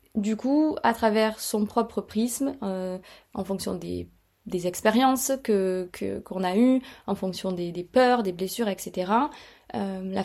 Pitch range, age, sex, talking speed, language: 195-240 Hz, 20-39, female, 165 wpm, French